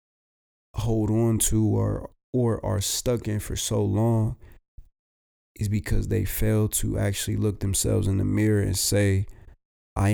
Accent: American